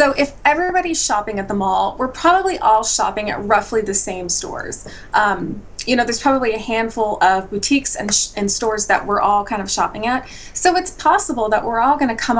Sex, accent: female, American